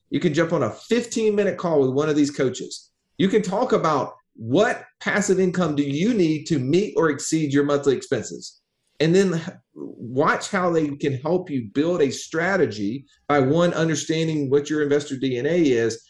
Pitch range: 130-175 Hz